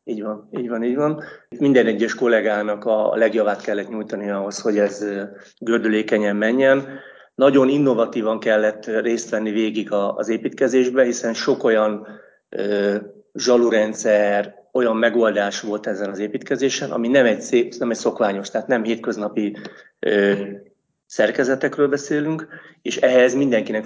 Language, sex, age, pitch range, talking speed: Hungarian, male, 30-49, 105-125 Hz, 130 wpm